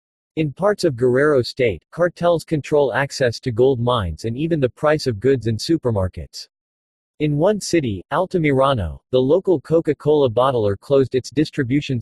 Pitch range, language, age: 120-150 Hz, English, 40-59